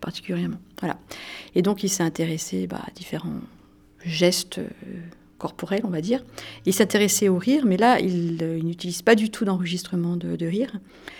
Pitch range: 165-200 Hz